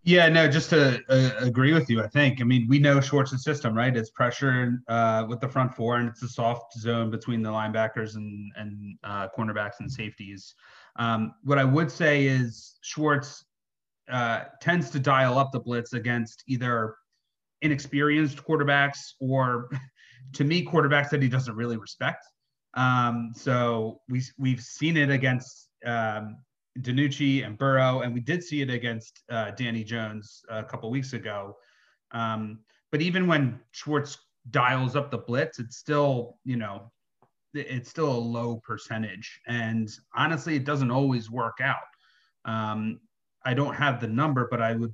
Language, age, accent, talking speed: English, 30-49, American, 165 wpm